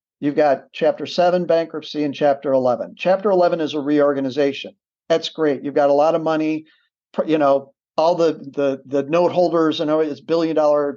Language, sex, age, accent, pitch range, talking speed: English, male, 50-69, American, 145-165 Hz, 180 wpm